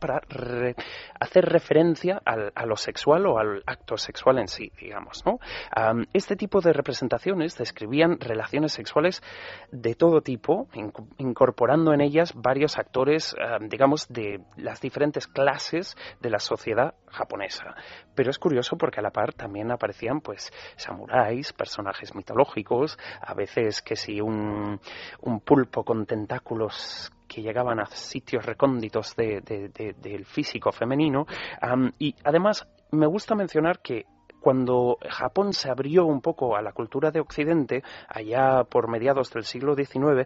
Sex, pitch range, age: male, 120-165 Hz, 30-49